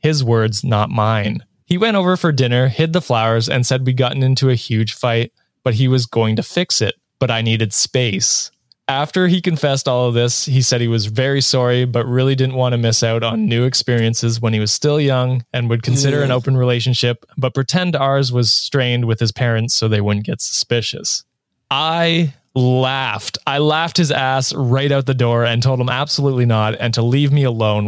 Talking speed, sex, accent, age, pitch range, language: 210 wpm, male, American, 20-39, 115-140 Hz, English